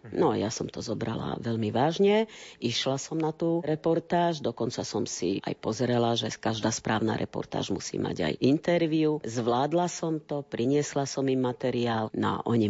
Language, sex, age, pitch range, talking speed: Slovak, female, 40-59, 115-150 Hz, 165 wpm